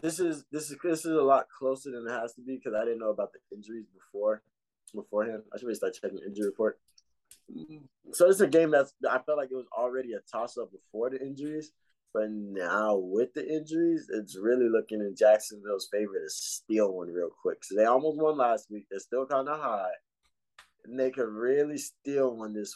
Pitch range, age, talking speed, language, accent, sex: 105-155 Hz, 20-39, 215 wpm, English, American, male